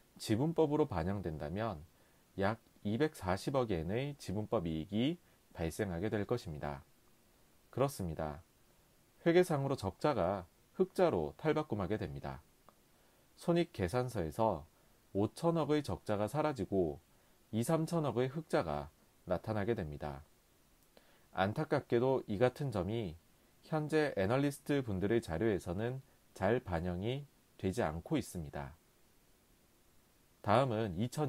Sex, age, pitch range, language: male, 30-49, 90-130 Hz, Korean